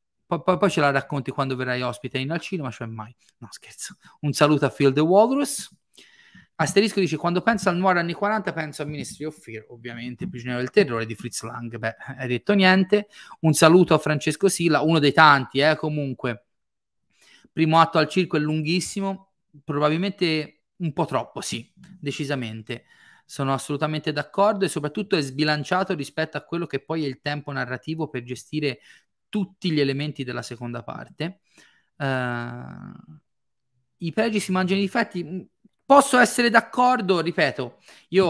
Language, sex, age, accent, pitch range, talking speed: Italian, male, 30-49, native, 125-165 Hz, 160 wpm